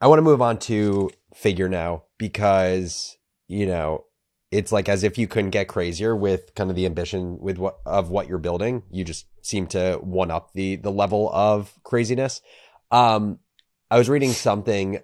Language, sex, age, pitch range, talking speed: English, male, 30-49, 95-115 Hz, 180 wpm